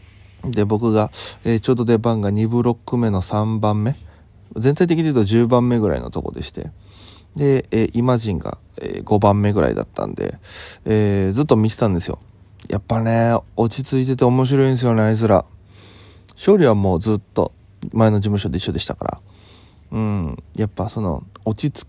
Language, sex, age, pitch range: Japanese, male, 20-39, 95-120 Hz